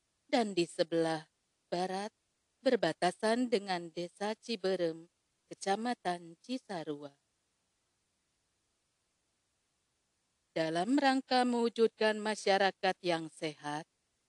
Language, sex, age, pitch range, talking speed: Indonesian, female, 40-59, 165-225 Hz, 65 wpm